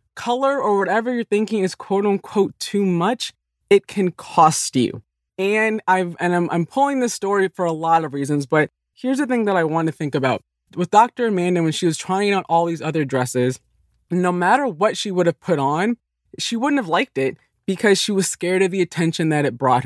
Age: 20-39